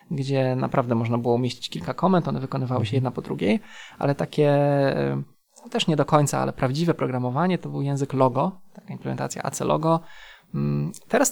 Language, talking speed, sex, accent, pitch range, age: Polish, 165 wpm, male, native, 125-160 Hz, 20-39